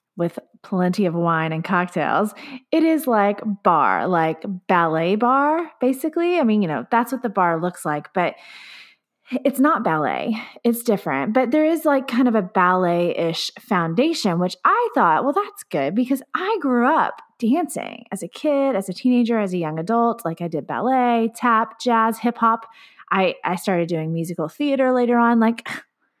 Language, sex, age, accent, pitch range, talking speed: English, female, 20-39, American, 190-275 Hz, 175 wpm